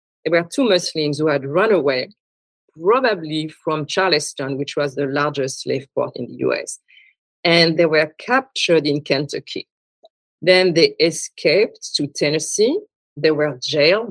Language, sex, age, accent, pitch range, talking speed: English, female, 50-69, French, 140-170 Hz, 145 wpm